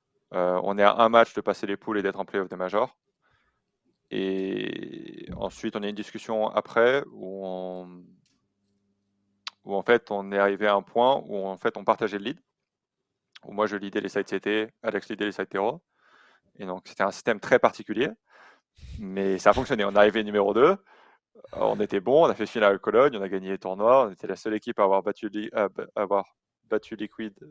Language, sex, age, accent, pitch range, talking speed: French, male, 20-39, French, 90-105 Hz, 210 wpm